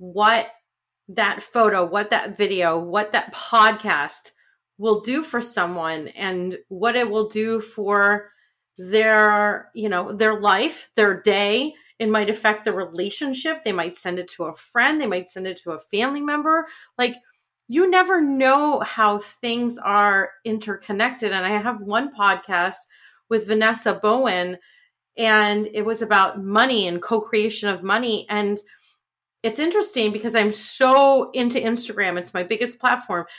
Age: 30-49